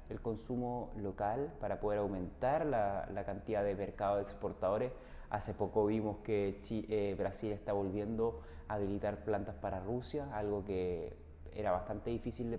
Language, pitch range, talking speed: Spanish, 100-120 Hz, 155 wpm